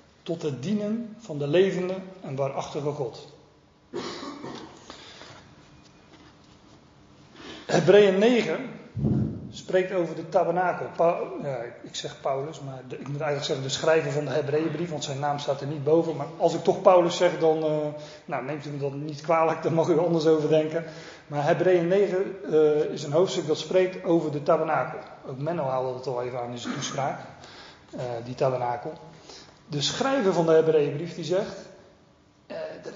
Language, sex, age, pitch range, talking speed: Dutch, male, 40-59, 145-180 Hz, 160 wpm